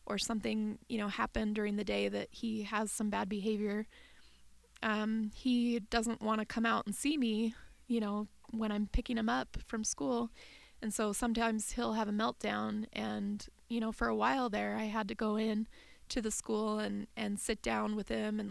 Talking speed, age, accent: 200 wpm, 20-39, American